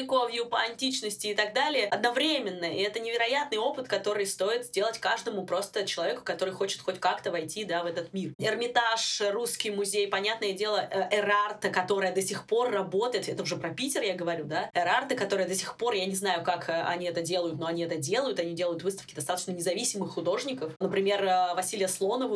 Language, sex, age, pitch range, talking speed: Russian, female, 20-39, 185-245 Hz, 185 wpm